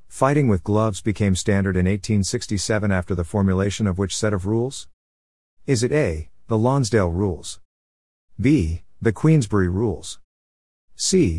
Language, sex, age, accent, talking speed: English, male, 50-69, American, 135 wpm